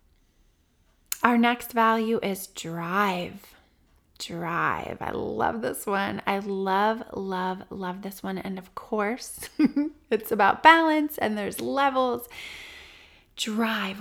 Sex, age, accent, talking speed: female, 20-39, American, 110 wpm